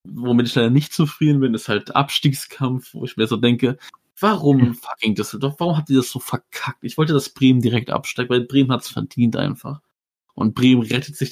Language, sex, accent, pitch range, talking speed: German, male, German, 120-140 Hz, 205 wpm